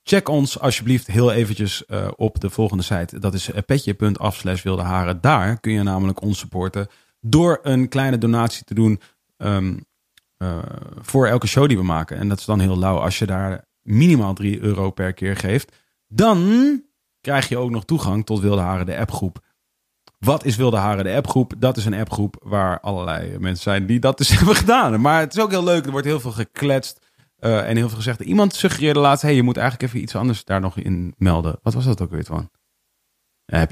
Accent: Dutch